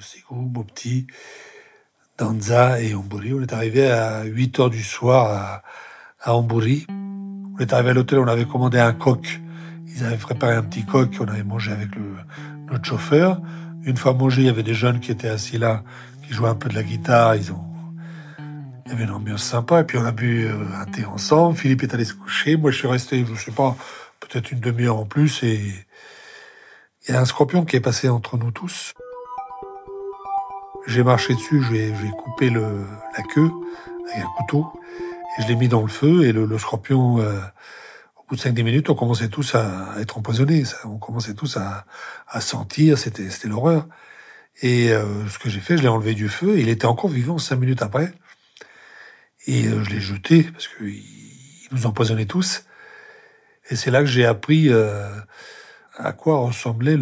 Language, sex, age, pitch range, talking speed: French, male, 60-79, 110-155 Hz, 205 wpm